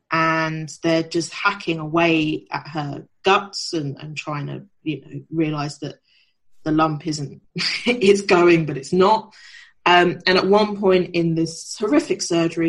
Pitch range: 155-180 Hz